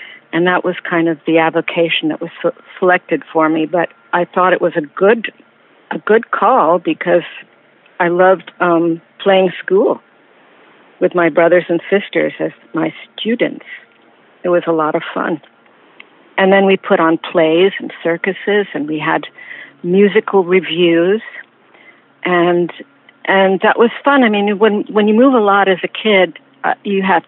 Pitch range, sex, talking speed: 165-195 Hz, female, 165 wpm